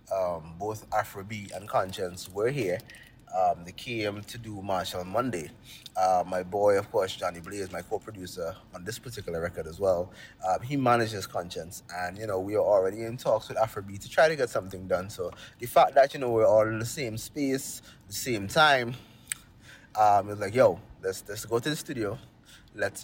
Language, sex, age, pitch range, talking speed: English, male, 20-39, 100-125 Hz, 200 wpm